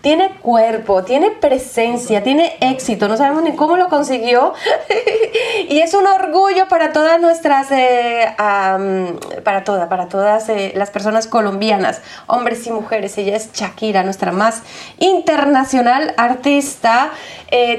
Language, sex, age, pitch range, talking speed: Spanish, female, 20-39, 220-285 Hz, 130 wpm